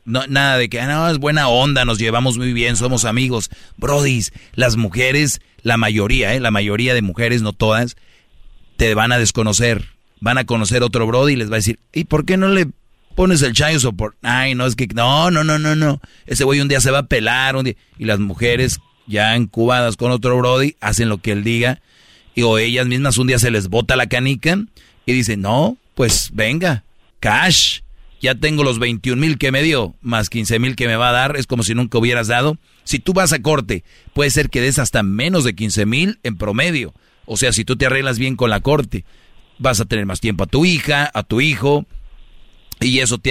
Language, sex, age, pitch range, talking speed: Spanish, male, 40-59, 115-135 Hz, 220 wpm